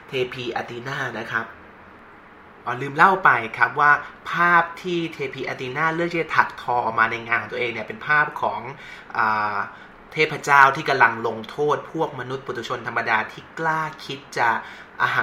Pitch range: 125-170 Hz